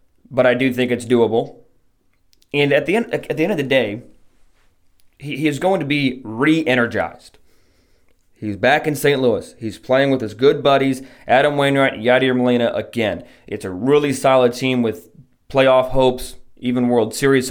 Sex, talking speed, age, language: male, 170 wpm, 20-39, English